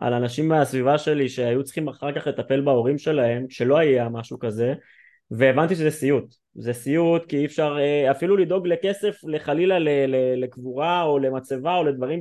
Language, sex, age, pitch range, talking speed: Hebrew, male, 20-39, 125-160 Hz, 165 wpm